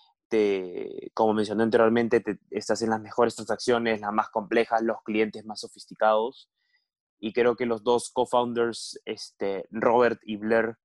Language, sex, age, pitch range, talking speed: Spanish, male, 20-39, 110-130 Hz, 150 wpm